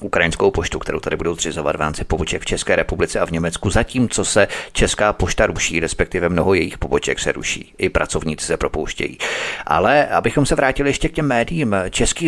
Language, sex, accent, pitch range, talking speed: Czech, male, native, 95-125 Hz, 185 wpm